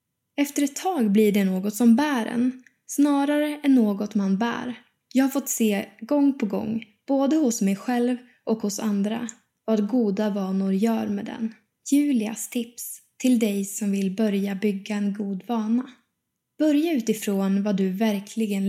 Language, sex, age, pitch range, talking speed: Swedish, female, 10-29, 210-255 Hz, 160 wpm